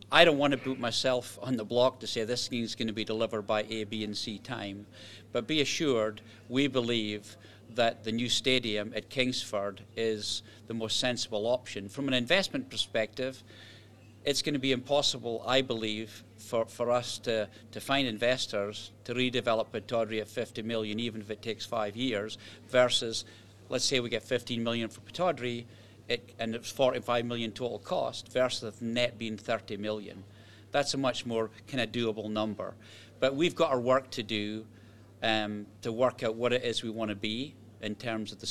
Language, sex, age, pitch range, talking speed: English, male, 50-69, 105-120 Hz, 190 wpm